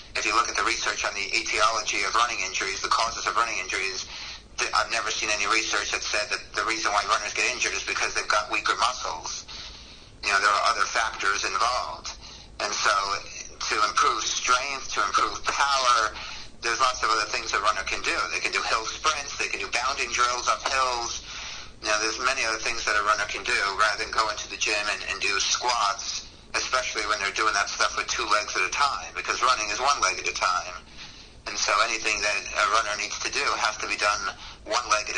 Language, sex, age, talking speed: English, male, 50-69, 220 wpm